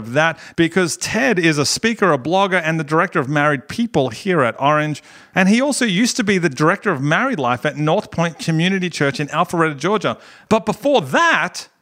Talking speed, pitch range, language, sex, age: 200 wpm, 145-195 Hz, English, male, 40-59